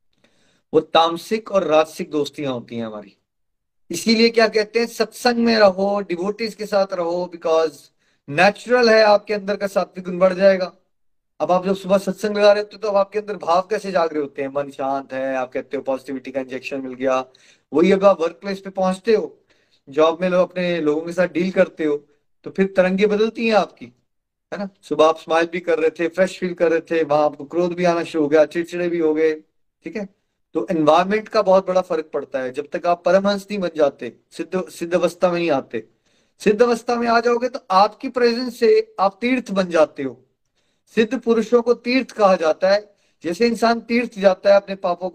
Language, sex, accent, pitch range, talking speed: Hindi, male, native, 155-210 Hz, 155 wpm